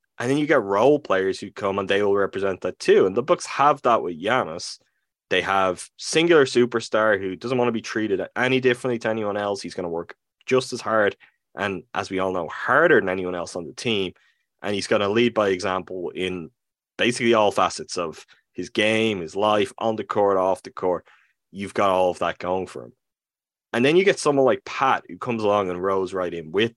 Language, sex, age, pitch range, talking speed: English, male, 20-39, 95-120 Hz, 225 wpm